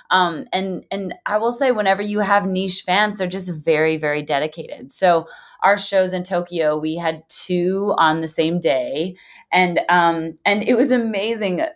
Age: 20-39